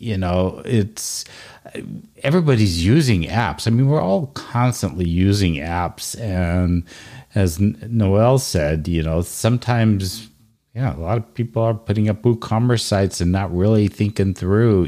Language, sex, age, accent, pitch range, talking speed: English, male, 50-69, American, 85-110 Hz, 140 wpm